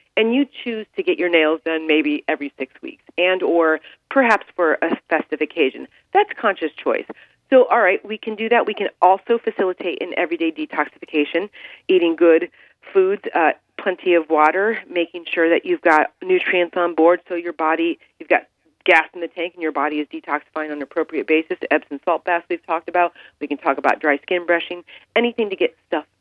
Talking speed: 200 wpm